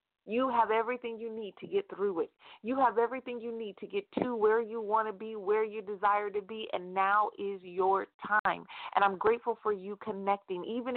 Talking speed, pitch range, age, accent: 215 wpm, 190-245 Hz, 40-59, American